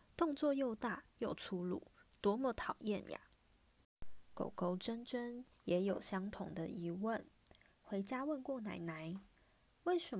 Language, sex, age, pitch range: Chinese, female, 30-49, 185-265 Hz